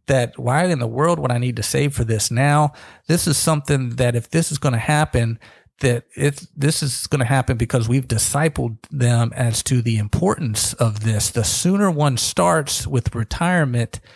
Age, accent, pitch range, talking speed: 40-59, American, 120-155 Hz, 195 wpm